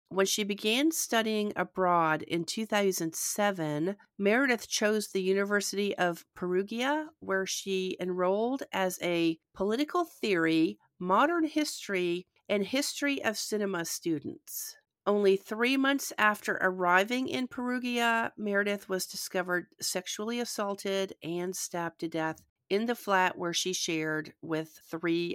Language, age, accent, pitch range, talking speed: English, 50-69, American, 175-225 Hz, 120 wpm